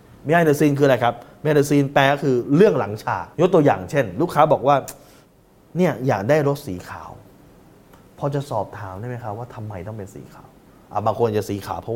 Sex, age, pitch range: male, 20-39, 105-150 Hz